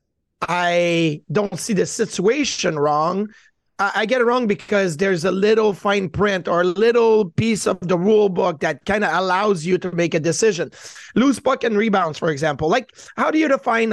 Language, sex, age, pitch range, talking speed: English, male, 30-49, 180-220 Hz, 190 wpm